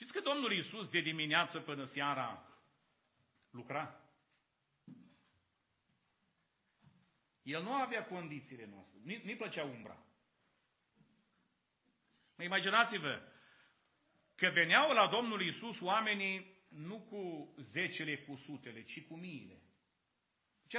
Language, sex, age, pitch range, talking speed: Romanian, male, 40-59, 130-170 Hz, 95 wpm